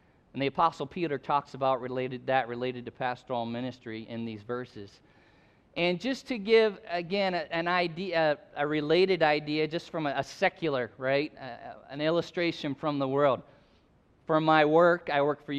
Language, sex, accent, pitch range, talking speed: English, male, American, 130-160 Hz, 160 wpm